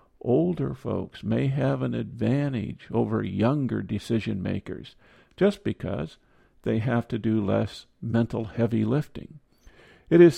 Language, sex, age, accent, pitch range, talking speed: English, male, 50-69, American, 110-125 Hz, 120 wpm